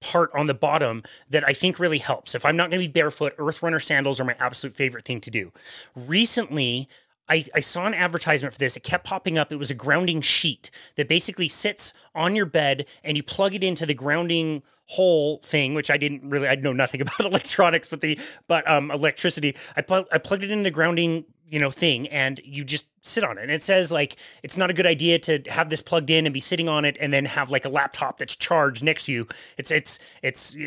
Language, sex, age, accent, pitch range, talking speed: English, male, 30-49, American, 145-185 Hz, 240 wpm